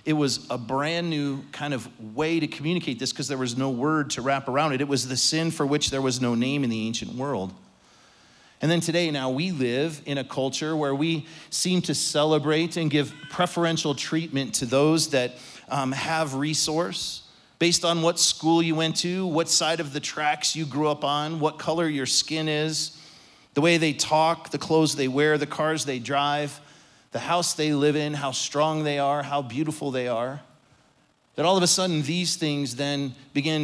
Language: English